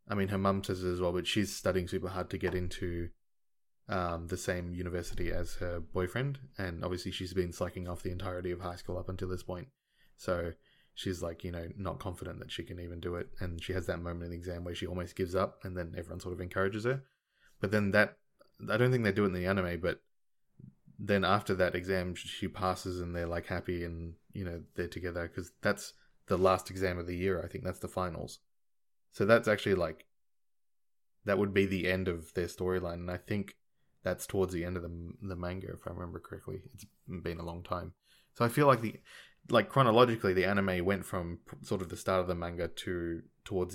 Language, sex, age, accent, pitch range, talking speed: English, male, 20-39, Australian, 90-100 Hz, 225 wpm